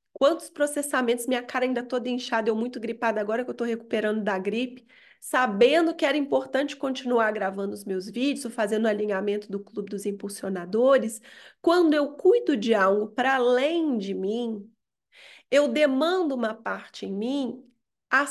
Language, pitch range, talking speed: Portuguese, 215-280 Hz, 160 wpm